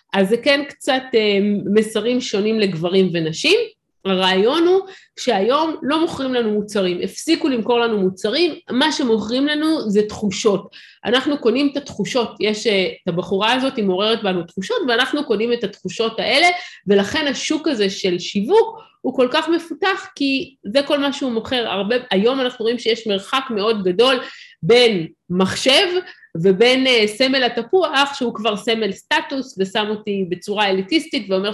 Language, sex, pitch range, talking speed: Hebrew, female, 200-285 Hz, 150 wpm